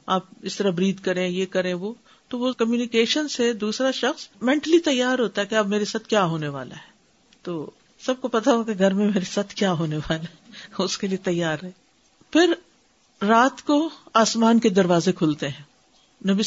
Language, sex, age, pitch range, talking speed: Urdu, female, 50-69, 170-225 Hz, 195 wpm